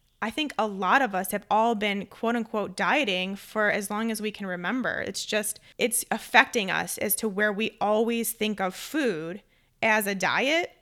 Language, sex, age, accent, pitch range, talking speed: English, female, 20-39, American, 205-250 Hz, 190 wpm